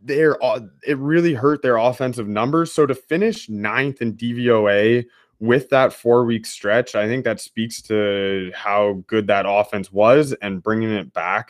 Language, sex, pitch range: English, male, 105-130 Hz